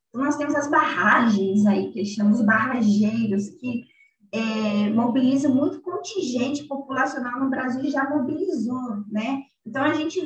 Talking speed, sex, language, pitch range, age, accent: 140 wpm, female, Portuguese, 225-275 Hz, 20-39, Brazilian